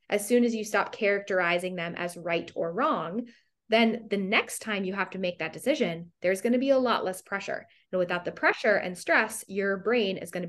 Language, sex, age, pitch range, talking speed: English, female, 20-39, 180-240 Hz, 215 wpm